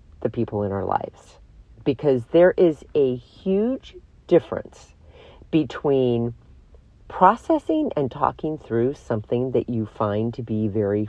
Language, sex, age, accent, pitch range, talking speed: English, female, 40-59, American, 115-155 Hz, 125 wpm